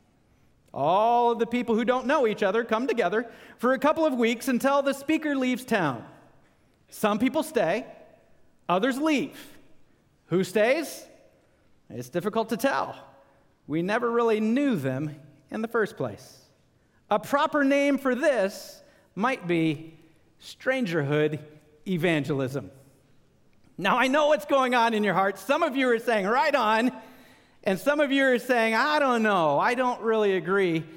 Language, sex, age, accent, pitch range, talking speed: English, male, 40-59, American, 170-255 Hz, 155 wpm